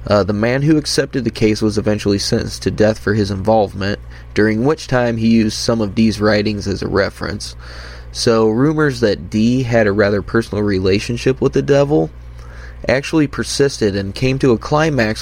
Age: 20-39